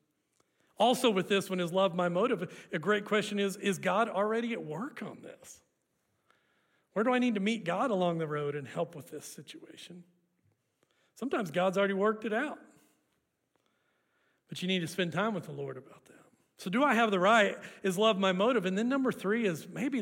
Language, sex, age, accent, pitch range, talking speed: English, male, 40-59, American, 175-245 Hz, 200 wpm